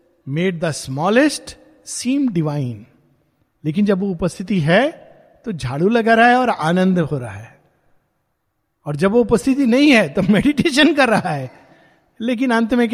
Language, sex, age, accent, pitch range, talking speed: Hindi, male, 50-69, native, 140-215 Hz, 135 wpm